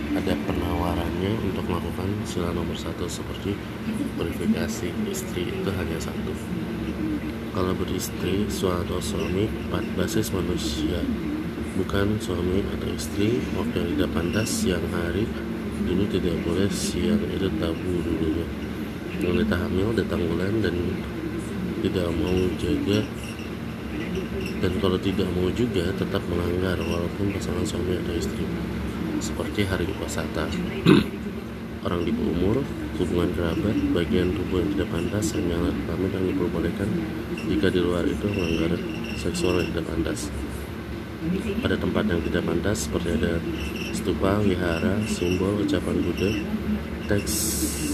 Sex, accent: male, native